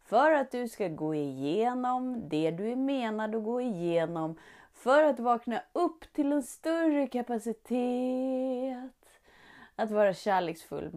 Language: Swedish